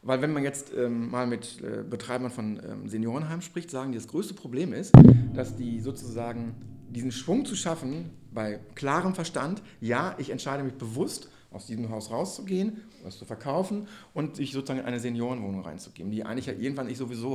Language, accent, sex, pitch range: German, German, male, 120-145 Hz